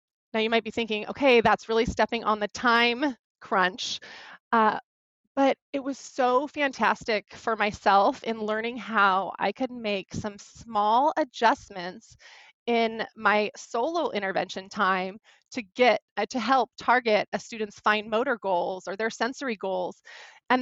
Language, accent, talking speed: English, American, 150 wpm